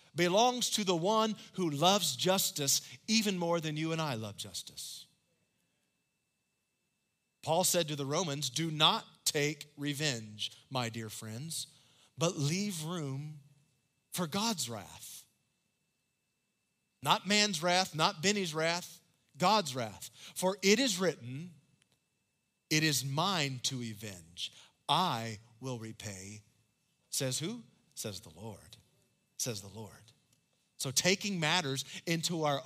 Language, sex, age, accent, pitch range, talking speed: English, male, 40-59, American, 120-170 Hz, 120 wpm